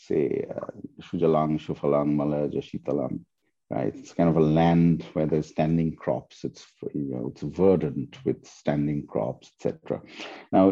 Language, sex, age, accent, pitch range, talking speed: English, male, 50-69, Indian, 80-95 Hz, 135 wpm